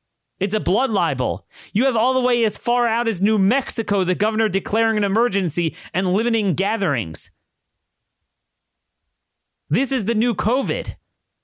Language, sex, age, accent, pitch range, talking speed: English, male, 30-49, American, 145-210 Hz, 145 wpm